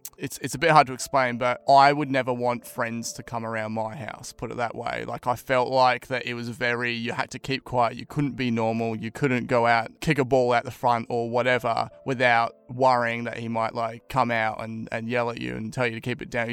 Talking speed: 260 wpm